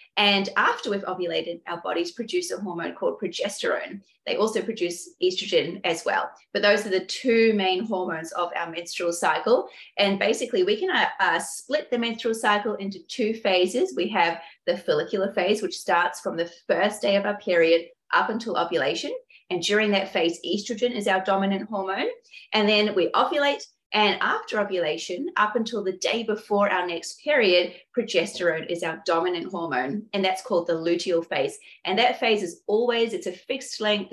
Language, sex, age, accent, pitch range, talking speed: English, female, 30-49, Australian, 180-250 Hz, 180 wpm